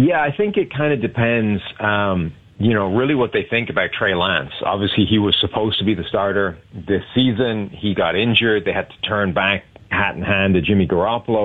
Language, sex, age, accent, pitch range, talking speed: English, male, 40-59, American, 95-115 Hz, 215 wpm